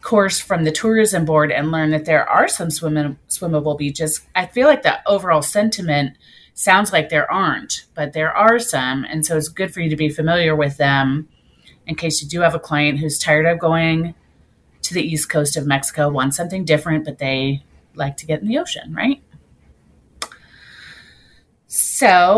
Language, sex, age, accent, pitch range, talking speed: English, female, 30-49, American, 155-195 Hz, 180 wpm